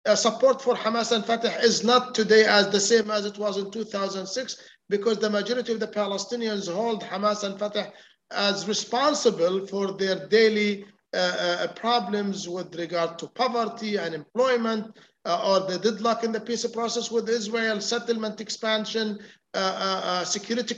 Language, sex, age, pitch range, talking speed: English, male, 50-69, 210-235 Hz, 165 wpm